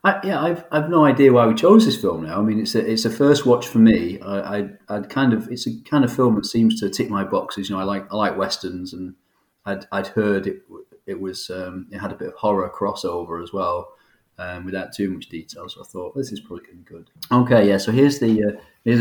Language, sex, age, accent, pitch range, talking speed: English, male, 40-59, British, 95-120 Hz, 265 wpm